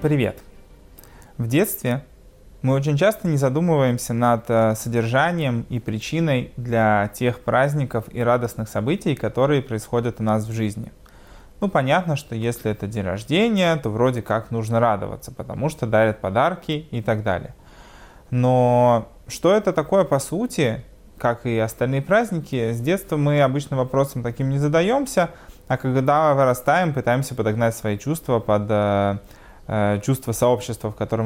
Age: 20-39